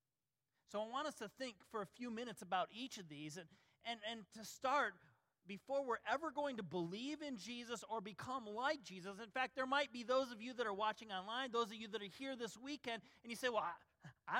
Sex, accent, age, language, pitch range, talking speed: male, American, 40-59, English, 150-235 Hz, 240 wpm